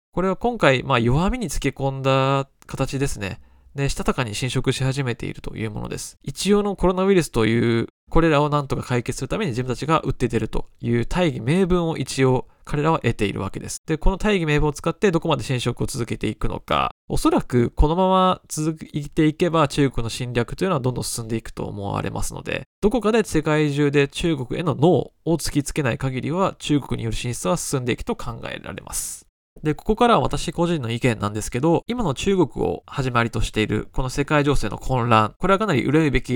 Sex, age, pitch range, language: male, 20-39, 120-165 Hz, Japanese